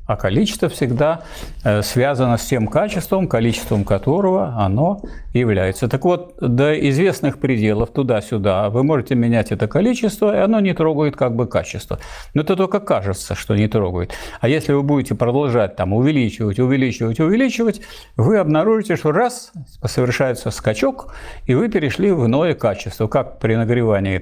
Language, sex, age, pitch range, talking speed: Russian, male, 50-69, 115-155 Hz, 150 wpm